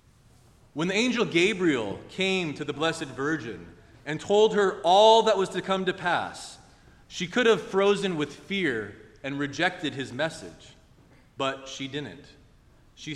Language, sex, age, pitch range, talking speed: English, male, 30-49, 130-170 Hz, 150 wpm